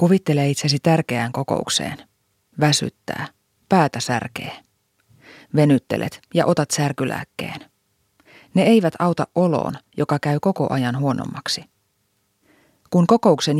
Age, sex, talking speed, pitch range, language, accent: 30-49, female, 95 wpm, 130-170 Hz, Finnish, native